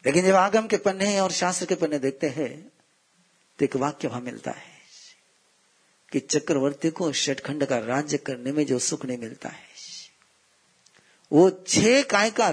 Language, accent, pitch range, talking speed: Hindi, native, 135-190 Hz, 165 wpm